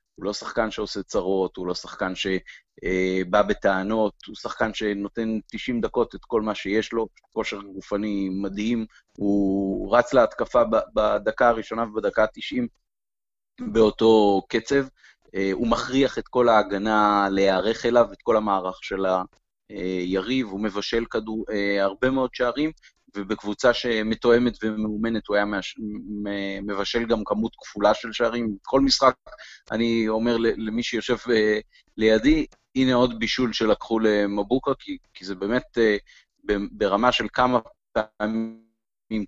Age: 30-49